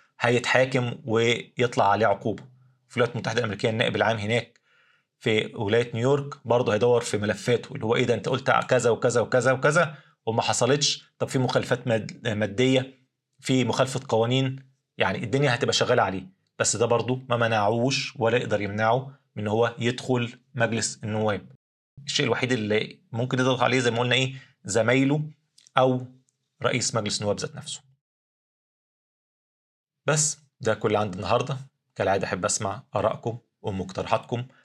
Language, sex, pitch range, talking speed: Arabic, male, 105-130 Hz, 140 wpm